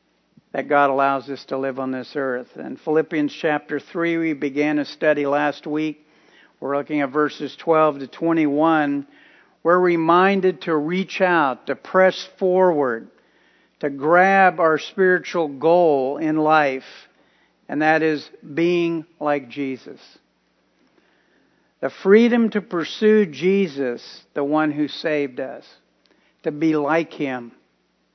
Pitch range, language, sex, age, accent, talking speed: 140-175 Hz, English, male, 60-79, American, 130 wpm